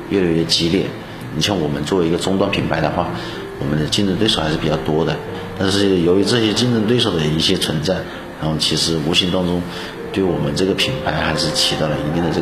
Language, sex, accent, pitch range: Chinese, male, native, 85-100 Hz